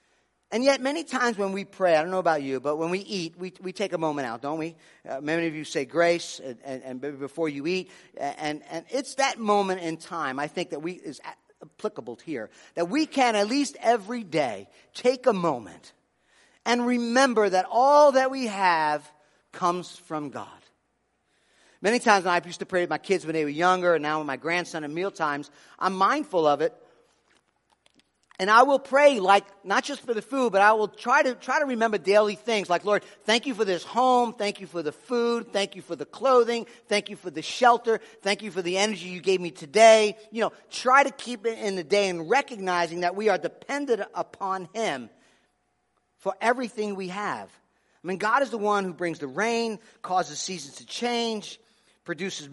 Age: 40-59